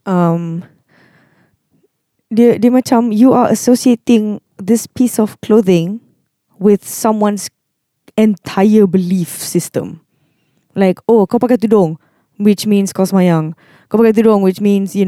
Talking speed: 120 wpm